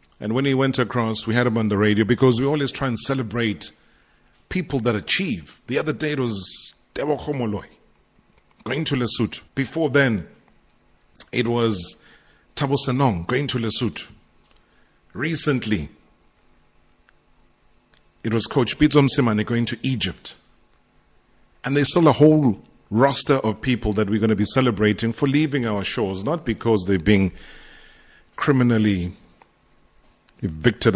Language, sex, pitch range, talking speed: English, male, 95-130 Hz, 140 wpm